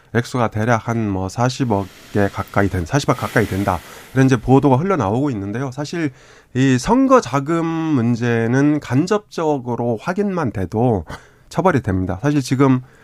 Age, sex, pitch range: 20-39, male, 105-140 Hz